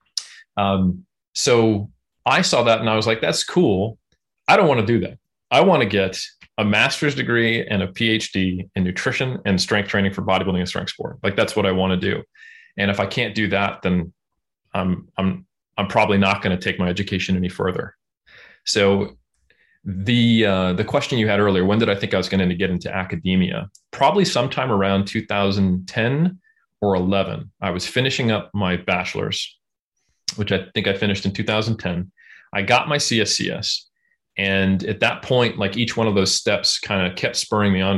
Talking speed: 190 wpm